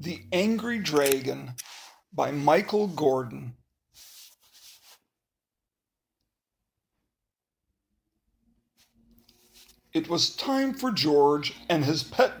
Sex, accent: male, American